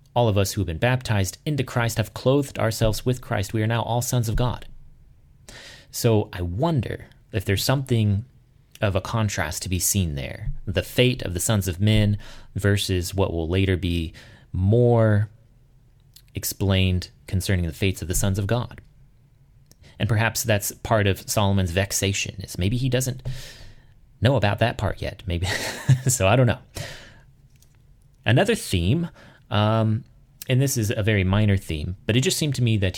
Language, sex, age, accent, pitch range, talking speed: English, male, 30-49, American, 100-125 Hz, 170 wpm